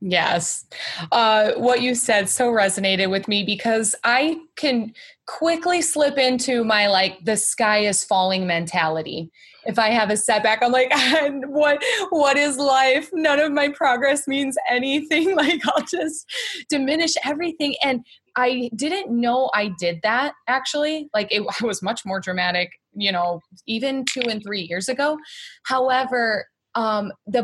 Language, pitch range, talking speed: English, 200-270 Hz, 150 wpm